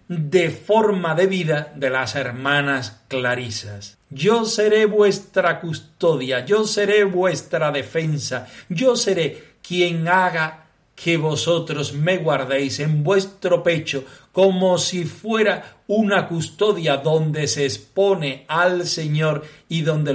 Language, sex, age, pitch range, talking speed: Spanish, male, 40-59, 140-185 Hz, 115 wpm